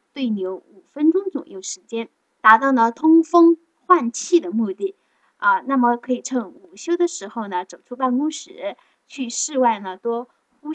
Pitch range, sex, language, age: 215-305 Hz, female, Chinese, 10-29